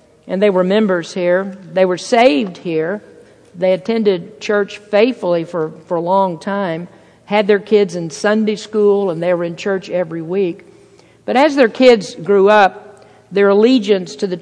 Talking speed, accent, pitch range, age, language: 170 wpm, American, 180-215 Hz, 50-69, English